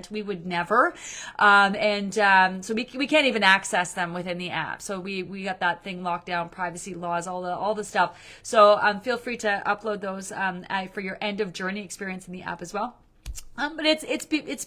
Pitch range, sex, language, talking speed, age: 195-240 Hz, female, English, 225 wpm, 30-49